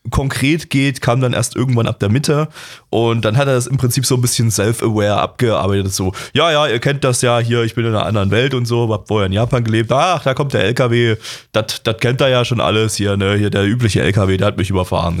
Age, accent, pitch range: 20-39, German, 105-125 Hz